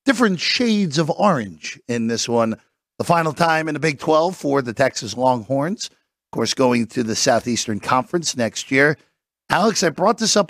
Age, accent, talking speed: 50-69, American, 185 wpm